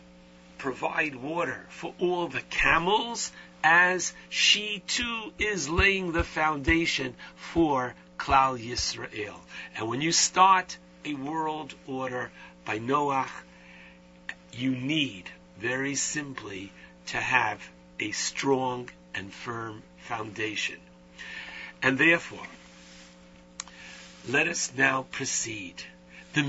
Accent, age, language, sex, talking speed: American, 60-79, English, male, 95 wpm